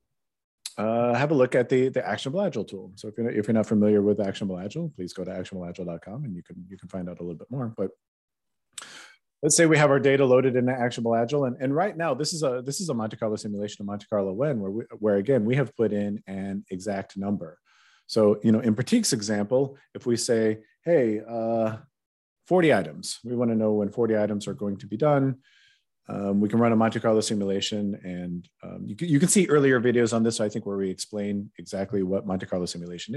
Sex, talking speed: male, 230 wpm